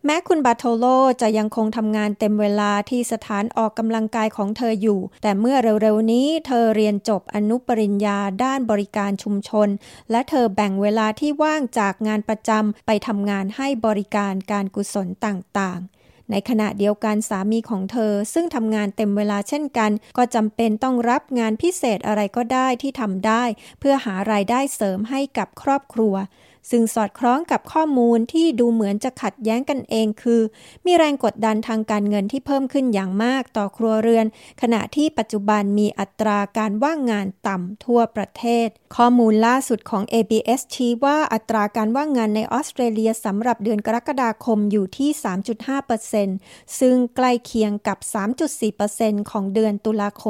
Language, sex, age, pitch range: Thai, female, 20-39, 210-245 Hz